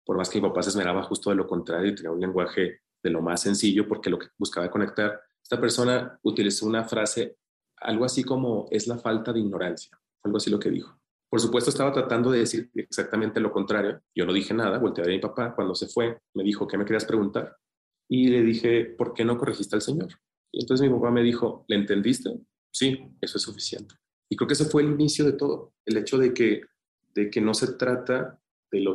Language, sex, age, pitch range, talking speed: Spanish, male, 30-49, 100-120 Hz, 225 wpm